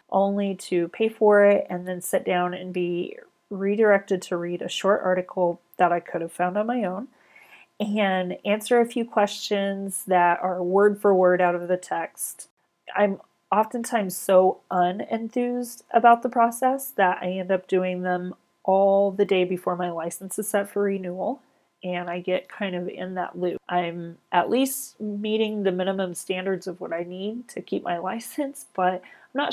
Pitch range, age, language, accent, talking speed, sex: 180-215 Hz, 30-49, English, American, 180 wpm, female